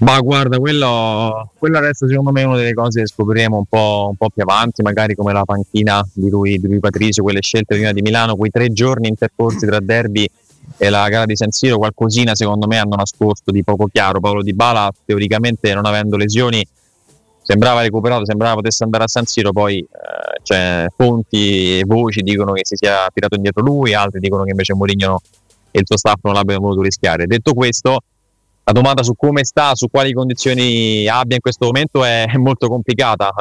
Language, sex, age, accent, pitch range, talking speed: Italian, male, 20-39, native, 100-120 Hz, 195 wpm